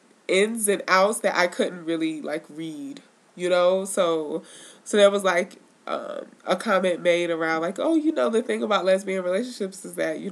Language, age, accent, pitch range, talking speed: English, 20-39, American, 170-225 Hz, 190 wpm